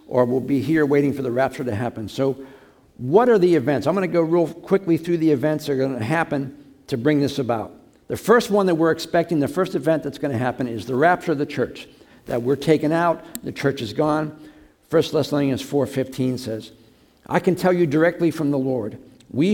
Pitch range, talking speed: 130-165 Hz, 225 wpm